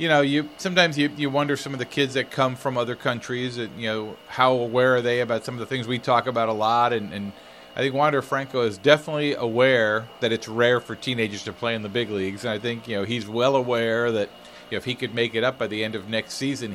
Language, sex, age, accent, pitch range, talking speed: English, male, 40-59, American, 110-135 Hz, 270 wpm